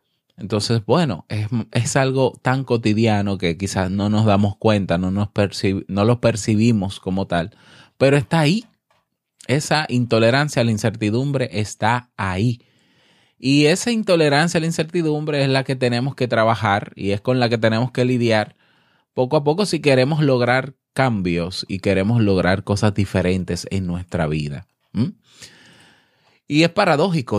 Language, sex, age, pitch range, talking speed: Spanish, male, 20-39, 95-135 Hz, 145 wpm